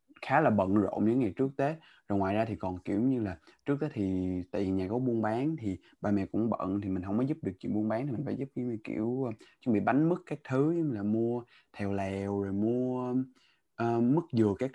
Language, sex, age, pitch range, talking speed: Vietnamese, male, 20-39, 100-125 Hz, 250 wpm